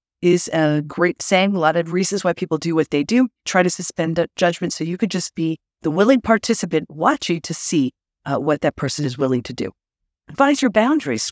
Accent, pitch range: American, 145-215 Hz